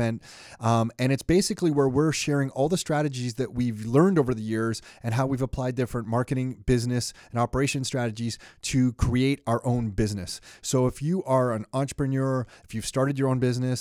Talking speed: 185 wpm